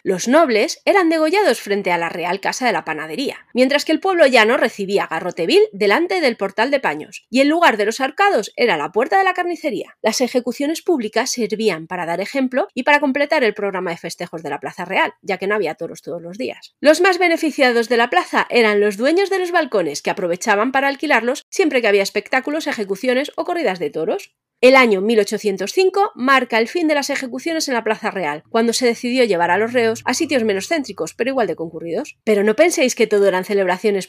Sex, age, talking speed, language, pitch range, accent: female, 30-49, 215 wpm, Spanish, 200-315 Hz, Spanish